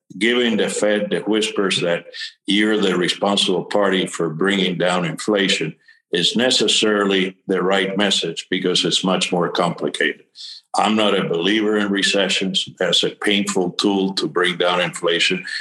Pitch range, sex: 95-110 Hz, male